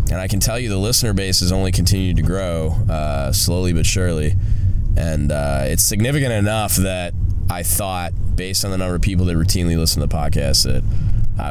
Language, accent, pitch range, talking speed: English, American, 90-110 Hz, 205 wpm